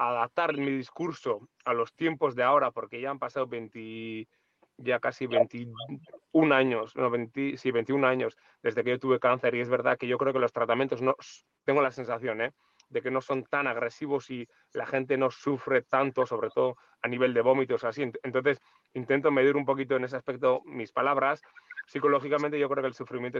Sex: male